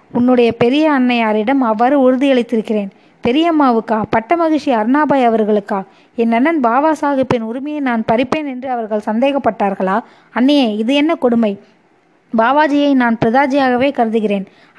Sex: female